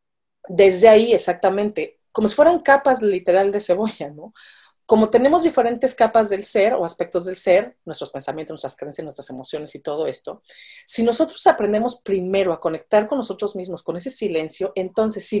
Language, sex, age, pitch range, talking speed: Spanish, female, 40-59, 185-240 Hz, 170 wpm